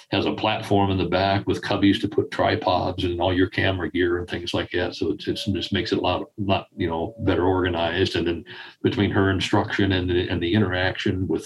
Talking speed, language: 235 wpm, English